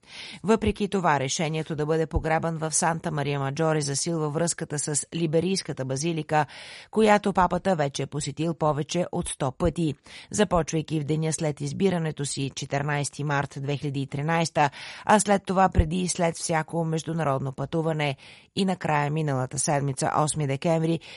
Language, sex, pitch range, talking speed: Bulgarian, female, 140-170 Hz, 135 wpm